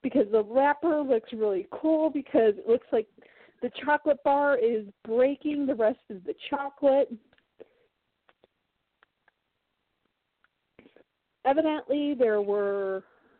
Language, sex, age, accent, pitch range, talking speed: English, female, 40-59, American, 210-280 Hz, 105 wpm